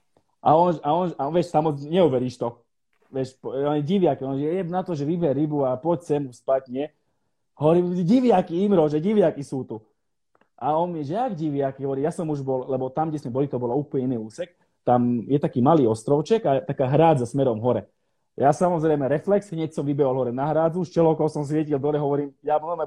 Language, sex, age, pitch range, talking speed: Slovak, male, 30-49, 125-165 Hz, 210 wpm